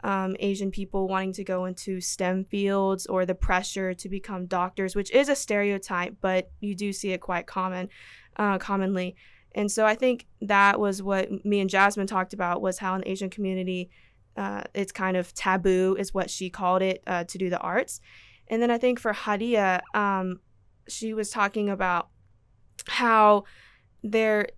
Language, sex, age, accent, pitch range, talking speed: English, female, 20-39, American, 185-205 Hz, 180 wpm